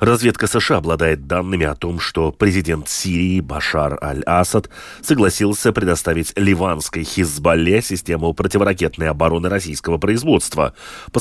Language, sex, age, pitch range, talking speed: Russian, male, 30-49, 85-120 Hz, 110 wpm